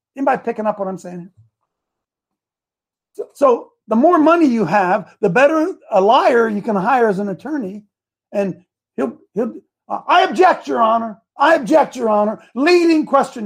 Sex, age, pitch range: male, 50-69, 200-275 Hz